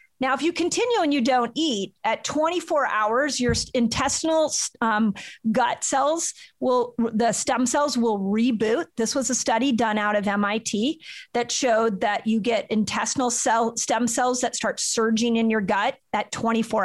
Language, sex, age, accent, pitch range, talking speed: English, female, 40-59, American, 225-270 Hz, 165 wpm